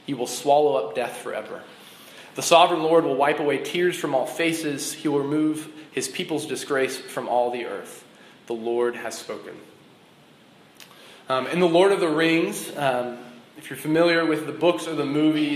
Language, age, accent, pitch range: English, 20-39, American, 130-165 Hz